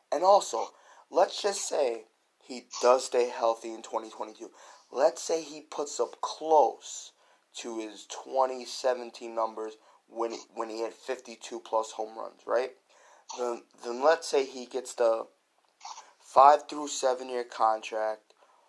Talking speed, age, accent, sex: 150 wpm, 20-39, American, male